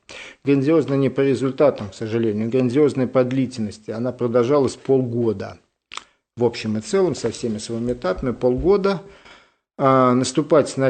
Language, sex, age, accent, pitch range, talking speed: Russian, male, 50-69, native, 125-175 Hz, 125 wpm